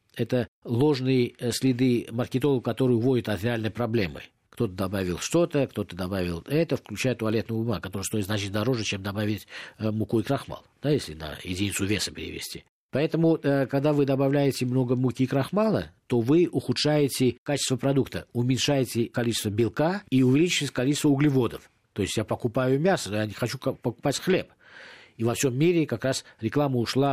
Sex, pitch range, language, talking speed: male, 110-140 Hz, Russian, 155 wpm